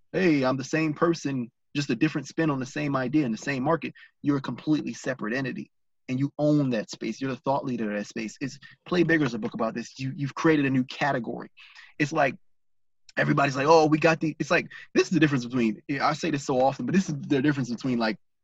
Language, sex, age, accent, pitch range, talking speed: English, male, 20-39, American, 125-150 Hz, 245 wpm